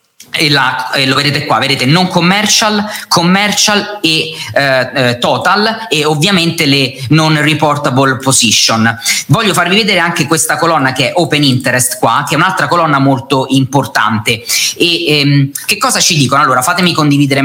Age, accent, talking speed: 20-39, native, 155 wpm